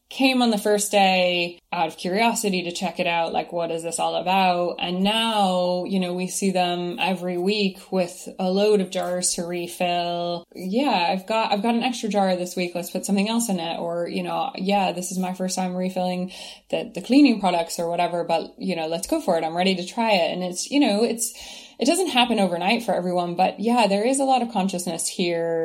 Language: English